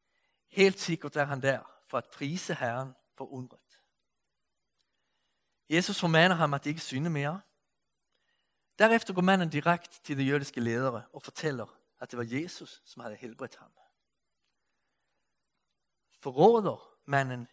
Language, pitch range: Danish, 130-175 Hz